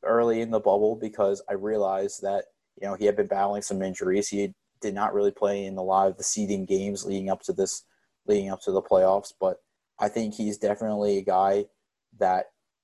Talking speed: 210 wpm